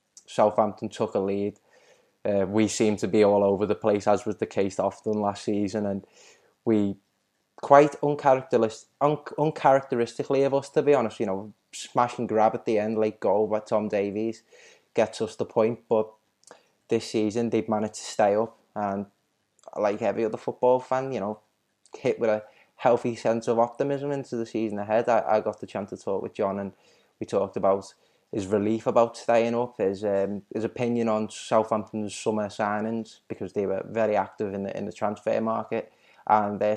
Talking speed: 185 wpm